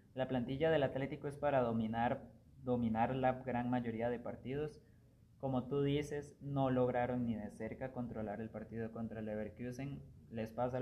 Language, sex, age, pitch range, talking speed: Spanish, male, 20-39, 115-135 Hz, 155 wpm